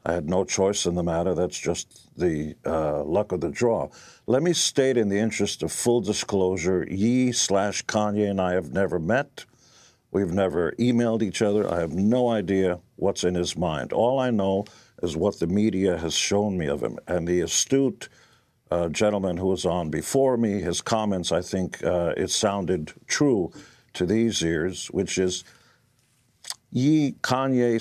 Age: 60-79